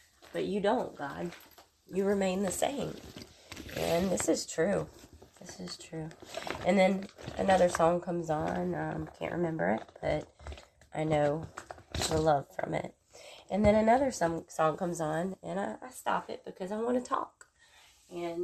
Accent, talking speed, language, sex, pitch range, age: American, 165 wpm, English, female, 155-190 Hz, 20-39